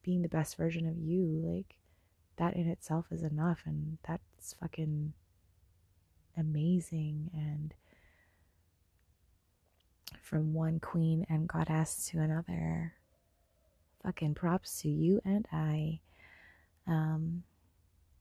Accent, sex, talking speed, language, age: American, female, 100 wpm, English, 20-39